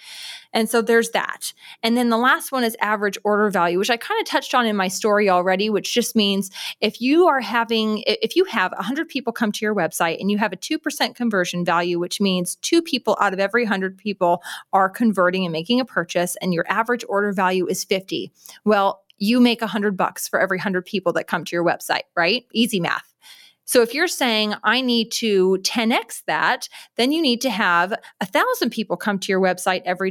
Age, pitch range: 30-49, 195-245 Hz